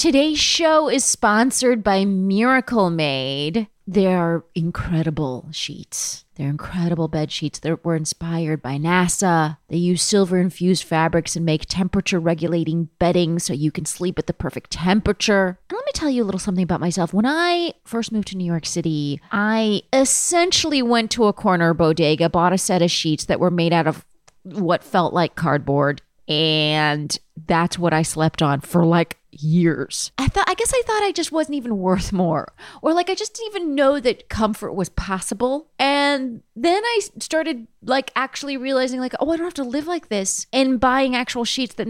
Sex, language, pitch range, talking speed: female, English, 165-255 Hz, 180 wpm